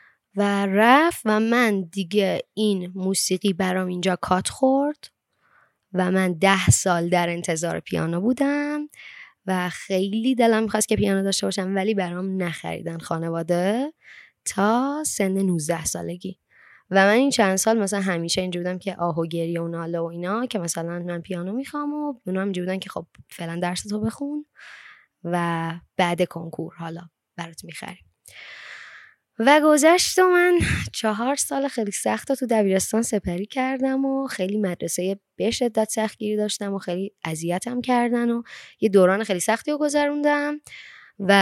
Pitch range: 180-245 Hz